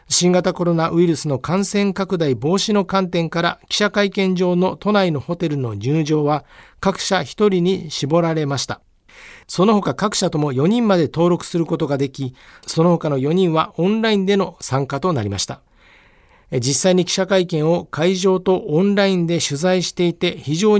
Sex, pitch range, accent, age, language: male, 145-195 Hz, native, 50-69, Japanese